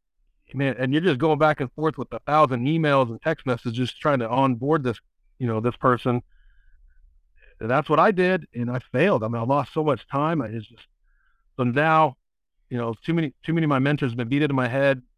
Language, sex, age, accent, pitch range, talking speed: English, male, 50-69, American, 115-140 Hz, 230 wpm